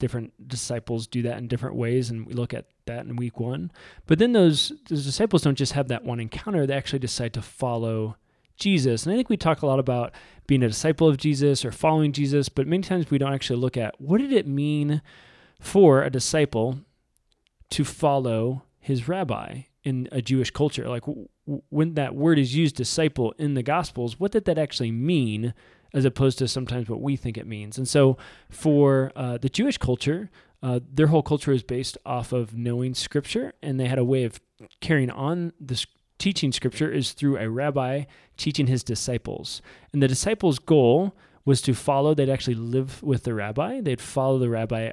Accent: American